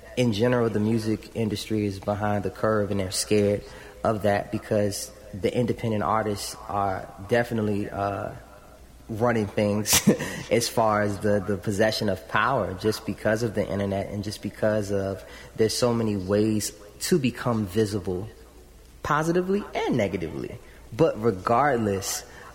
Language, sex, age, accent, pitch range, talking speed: English, male, 20-39, American, 100-110 Hz, 140 wpm